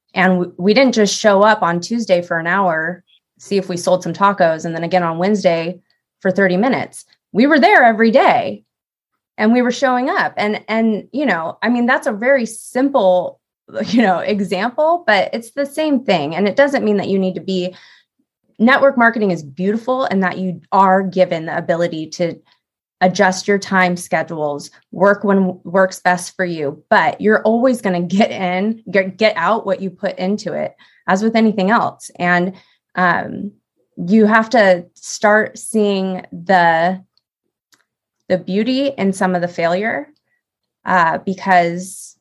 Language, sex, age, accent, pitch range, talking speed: English, female, 20-39, American, 180-225 Hz, 170 wpm